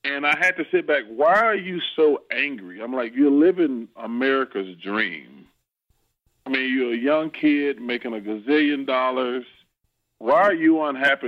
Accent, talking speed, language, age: American, 165 wpm, English, 40-59